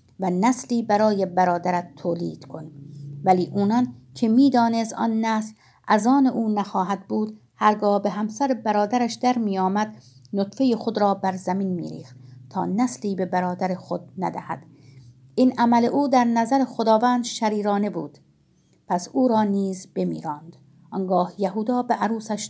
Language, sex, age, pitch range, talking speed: Persian, female, 50-69, 180-235 Hz, 140 wpm